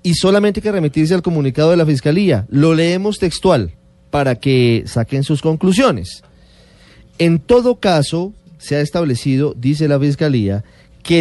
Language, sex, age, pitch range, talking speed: Spanish, male, 40-59, 125-170 Hz, 150 wpm